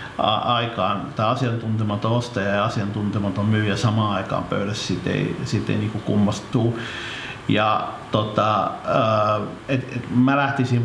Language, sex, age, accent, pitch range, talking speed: Finnish, male, 50-69, native, 105-130 Hz, 120 wpm